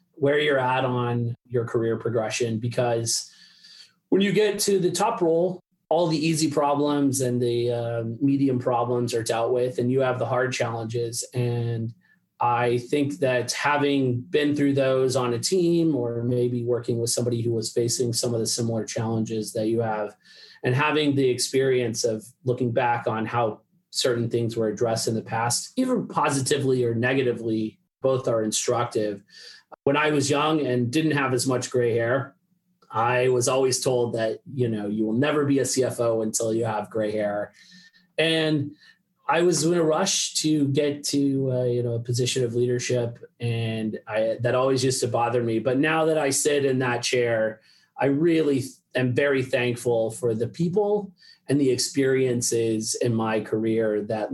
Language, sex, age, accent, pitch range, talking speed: English, male, 30-49, American, 115-145 Hz, 175 wpm